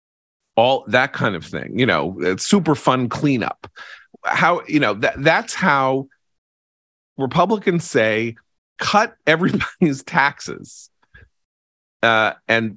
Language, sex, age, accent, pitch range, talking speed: English, male, 40-59, American, 100-140 Hz, 115 wpm